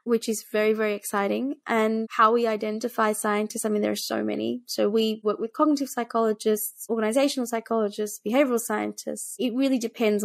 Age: 20-39